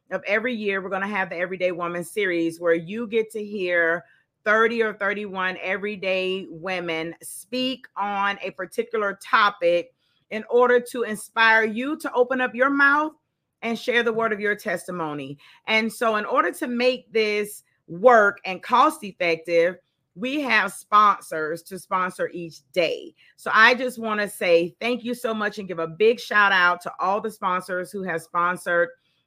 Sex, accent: female, American